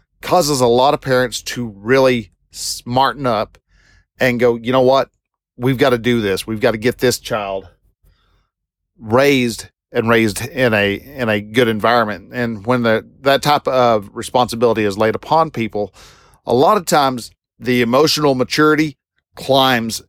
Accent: American